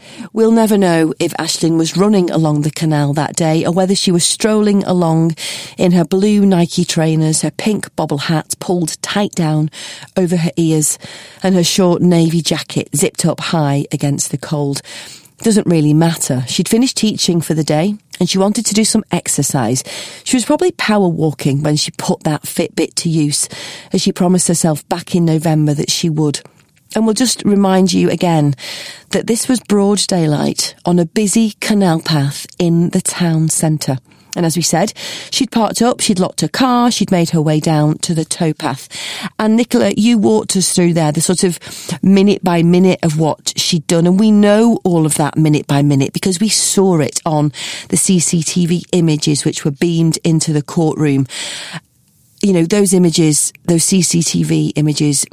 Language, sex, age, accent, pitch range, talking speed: English, female, 40-59, British, 155-195 Hz, 185 wpm